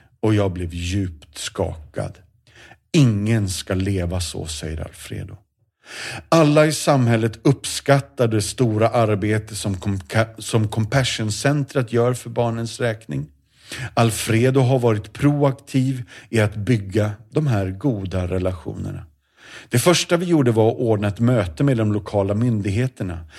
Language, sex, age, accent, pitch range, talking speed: Swedish, male, 40-59, native, 95-130 Hz, 130 wpm